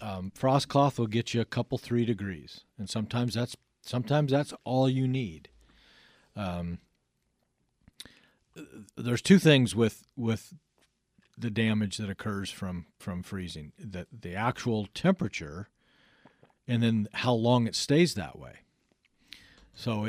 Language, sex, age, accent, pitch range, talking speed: English, male, 50-69, American, 100-120 Hz, 130 wpm